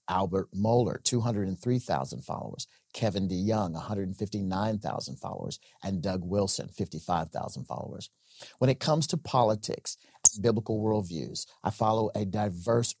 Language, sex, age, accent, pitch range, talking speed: English, male, 50-69, American, 90-110 Hz, 115 wpm